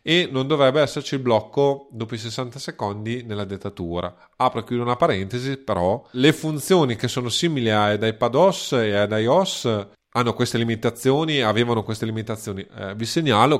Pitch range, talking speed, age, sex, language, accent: 100-130 Hz, 160 wpm, 30-49, male, Italian, native